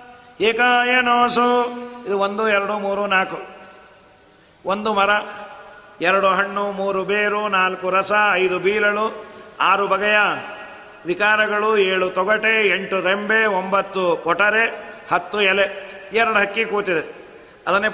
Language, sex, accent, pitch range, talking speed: Kannada, male, native, 220-245 Hz, 105 wpm